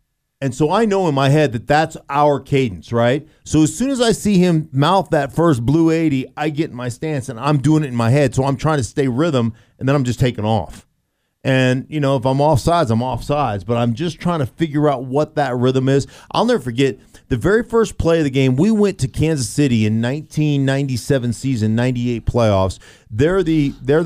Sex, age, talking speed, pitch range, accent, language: male, 40-59, 225 wpm, 120-150 Hz, American, English